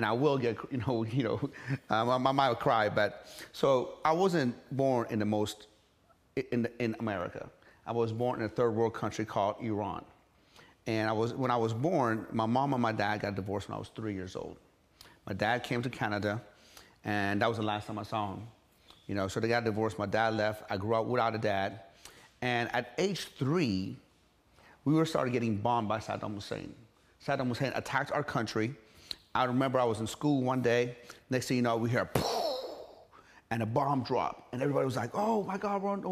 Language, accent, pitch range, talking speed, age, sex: English, American, 110-155 Hz, 210 wpm, 30-49, male